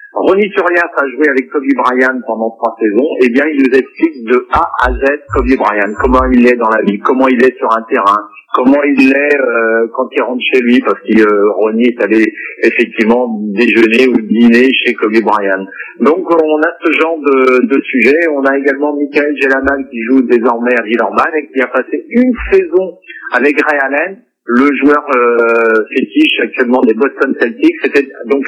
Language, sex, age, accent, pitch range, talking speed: French, male, 50-69, French, 120-165 Hz, 195 wpm